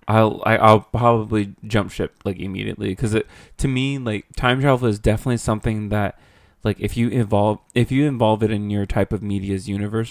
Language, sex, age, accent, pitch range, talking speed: English, male, 20-39, American, 100-120 Hz, 190 wpm